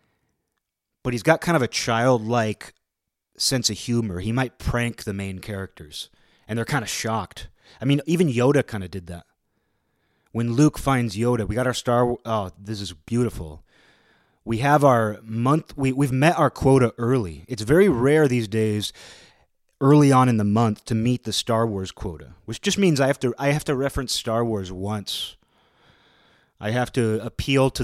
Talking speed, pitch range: 185 wpm, 100-125 Hz